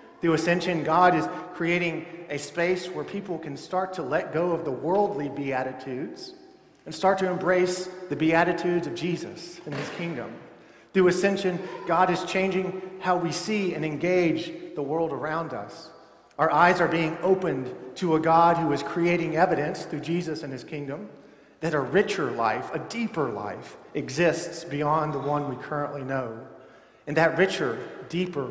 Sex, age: male, 40-59